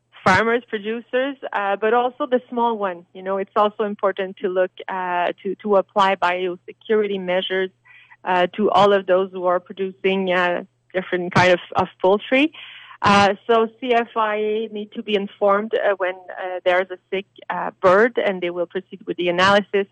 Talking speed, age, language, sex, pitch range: 175 wpm, 30-49, English, female, 180-205 Hz